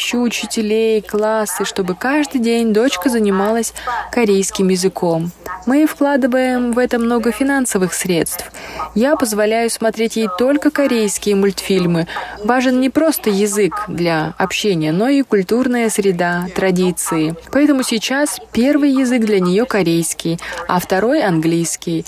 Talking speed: 120 wpm